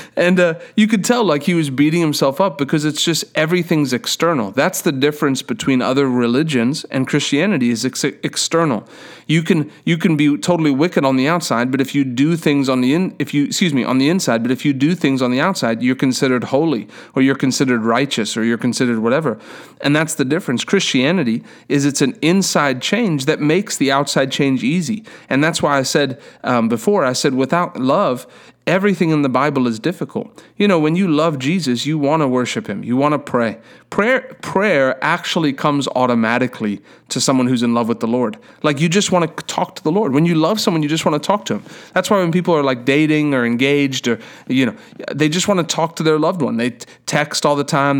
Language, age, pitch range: English, 30-49, 130-175 Hz